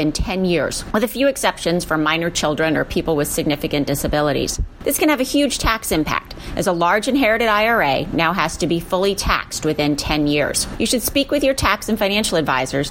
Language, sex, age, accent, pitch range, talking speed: English, female, 40-59, American, 155-225 Hz, 205 wpm